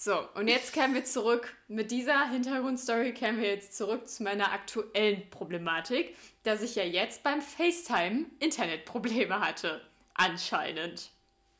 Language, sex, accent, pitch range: German, female, German, 215-290 Hz